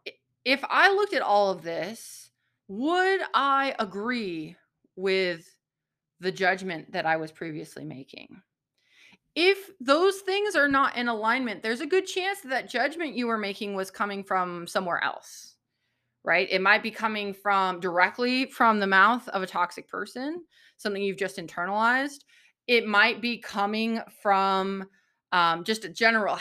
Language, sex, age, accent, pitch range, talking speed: English, female, 20-39, American, 190-270 Hz, 150 wpm